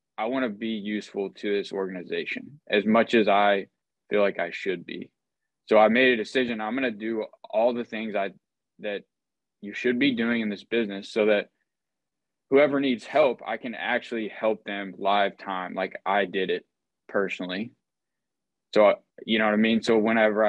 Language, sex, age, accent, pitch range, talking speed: English, male, 20-39, American, 100-115 Hz, 180 wpm